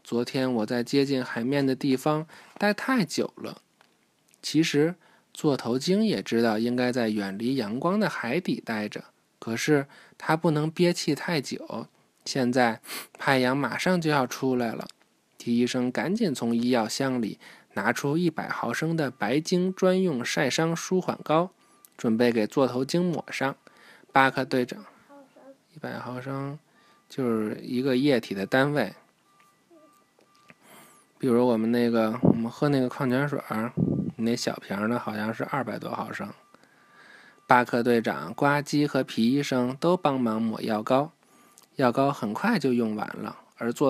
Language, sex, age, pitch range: Chinese, male, 20-39, 120-160 Hz